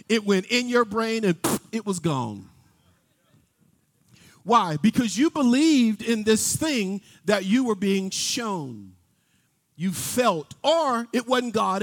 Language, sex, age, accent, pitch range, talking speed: English, male, 50-69, American, 180-265 Hz, 135 wpm